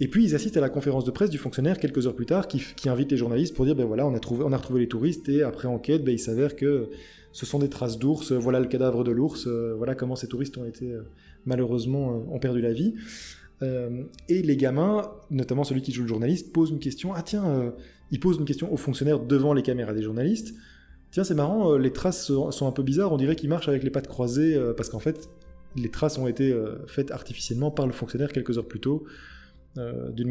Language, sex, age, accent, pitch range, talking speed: French, male, 20-39, French, 130-170 Hz, 250 wpm